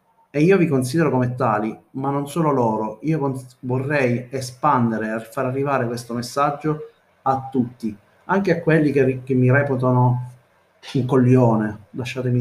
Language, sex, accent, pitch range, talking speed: Italian, male, native, 115-145 Hz, 140 wpm